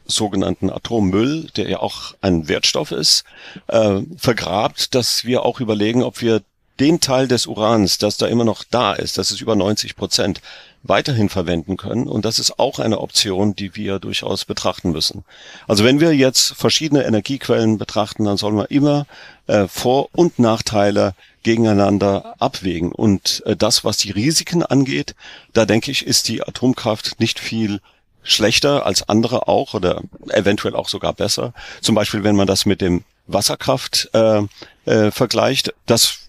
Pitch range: 100-120 Hz